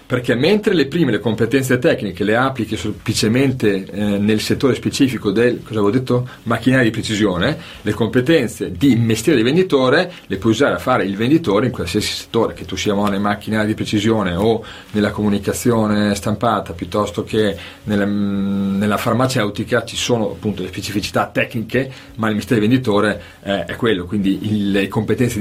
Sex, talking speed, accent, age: male, 160 wpm, native, 40-59